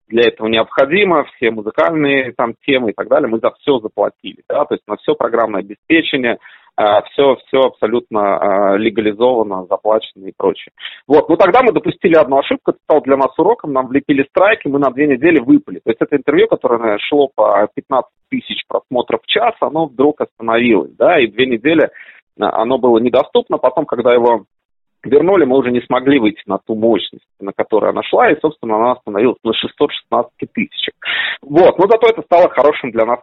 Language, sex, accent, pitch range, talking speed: Russian, male, native, 110-145 Hz, 180 wpm